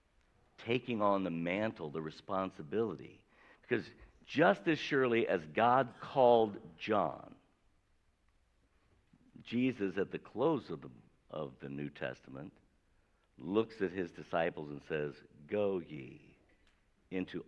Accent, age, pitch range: American, 60-79, 75-100 Hz